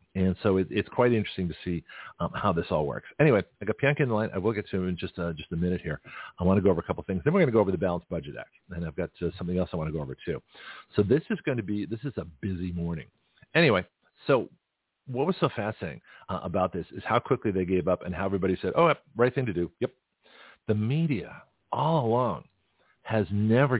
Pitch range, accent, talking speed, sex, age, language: 90-120 Hz, American, 265 wpm, male, 50-69, English